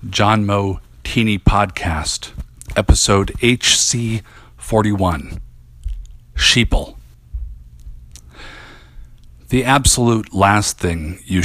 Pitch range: 75-105 Hz